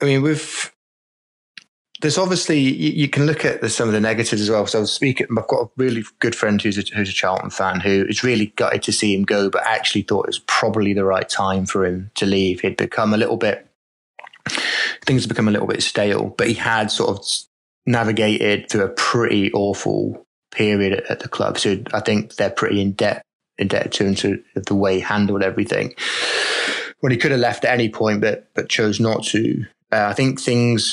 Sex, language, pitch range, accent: male, English, 100-120 Hz, British